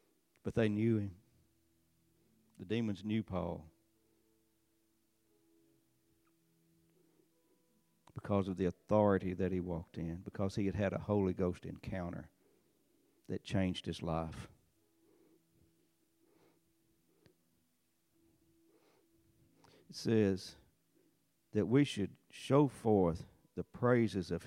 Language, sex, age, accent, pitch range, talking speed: English, male, 60-79, American, 90-115 Hz, 95 wpm